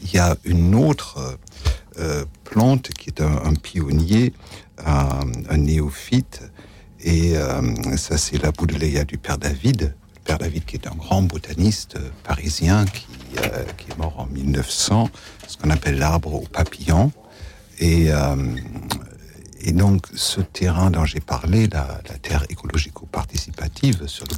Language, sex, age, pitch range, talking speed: French, male, 60-79, 75-100 Hz, 150 wpm